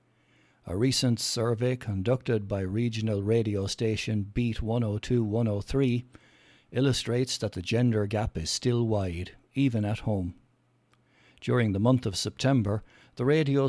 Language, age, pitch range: English, 60-79, 105-130 Hz